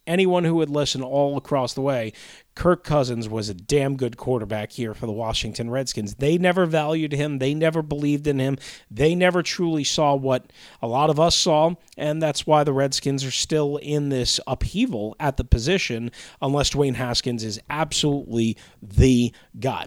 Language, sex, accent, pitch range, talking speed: English, male, American, 120-160 Hz, 180 wpm